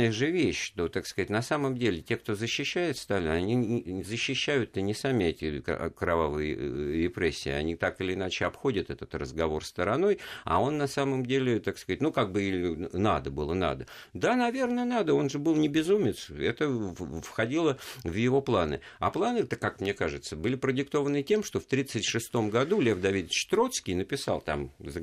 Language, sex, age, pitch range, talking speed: Russian, male, 50-69, 90-140 Hz, 175 wpm